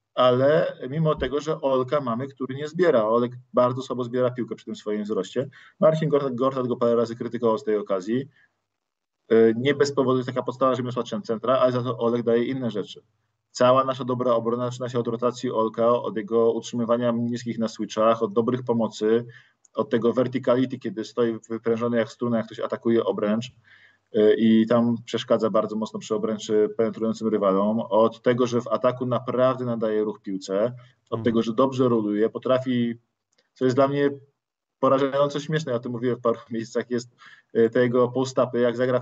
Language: Polish